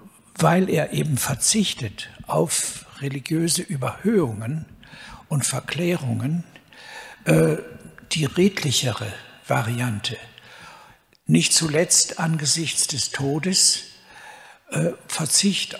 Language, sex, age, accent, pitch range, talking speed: German, male, 60-79, German, 135-175 Hz, 75 wpm